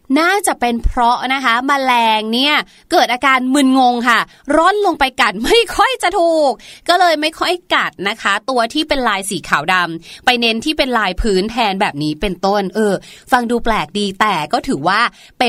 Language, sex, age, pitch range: Thai, female, 20-39, 200-290 Hz